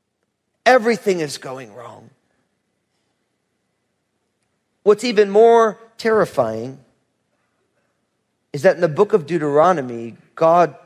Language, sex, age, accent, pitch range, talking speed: English, male, 40-59, American, 190-255 Hz, 90 wpm